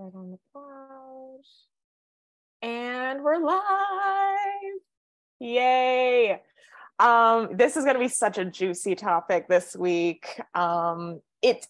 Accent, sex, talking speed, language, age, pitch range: American, female, 105 wpm, English, 20-39, 185-250 Hz